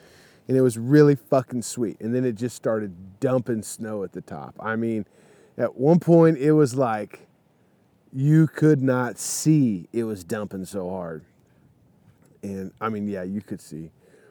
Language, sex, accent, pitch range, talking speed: English, male, American, 110-145 Hz, 170 wpm